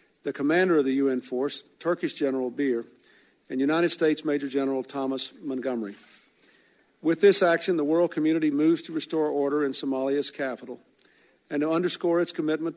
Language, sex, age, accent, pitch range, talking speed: English, male, 50-69, American, 135-165 Hz, 160 wpm